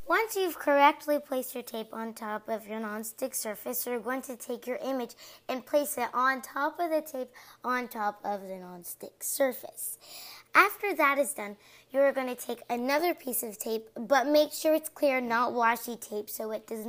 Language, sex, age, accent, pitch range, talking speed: English, female, 20-39, American, 235-300 Hz, 190 wpm